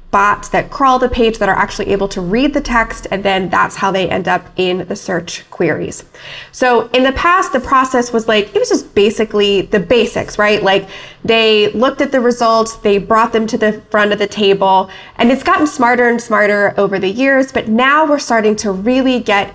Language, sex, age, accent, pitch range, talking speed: English, female, 20-39, American, 200-255 Hz, 210 wpm